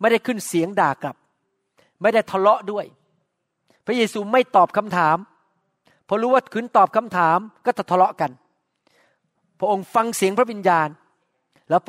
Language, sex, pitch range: Thai, male, 170-220 Hz